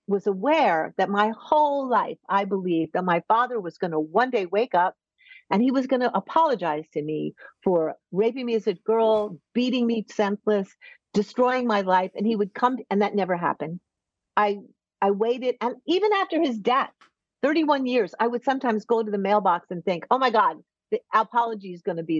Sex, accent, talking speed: female, American, 205 wpm